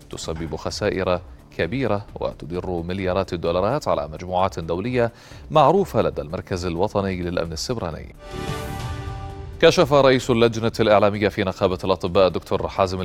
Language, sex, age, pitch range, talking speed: Arabic, male, 30-49, 90-110 Hz, 110 wpm